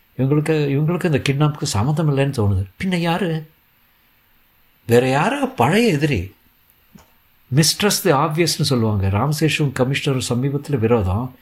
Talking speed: 105 wpm